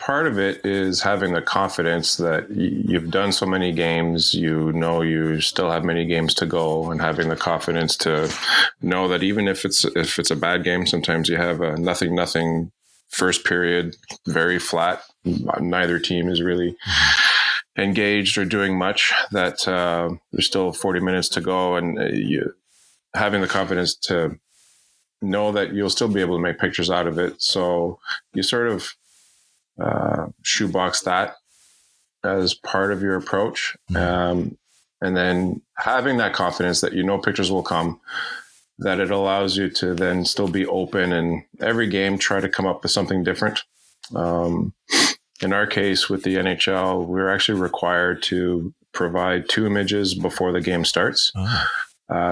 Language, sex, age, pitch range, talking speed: English, male, 20-39, 85-95 Hz, 160 wpm